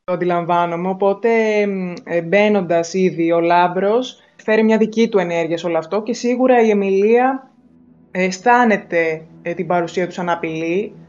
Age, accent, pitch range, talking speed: 20-39, native, 170-195 Hz, 135 wpm